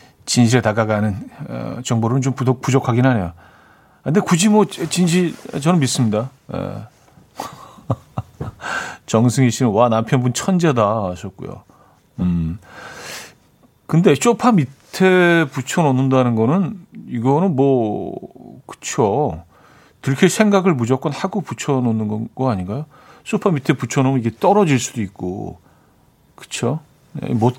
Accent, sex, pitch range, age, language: native, male, 115-160 Hz, 40-59, Korean